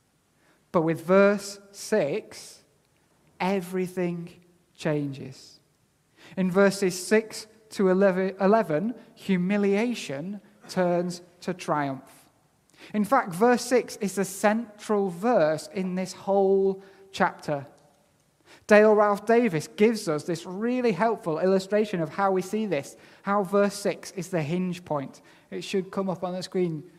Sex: male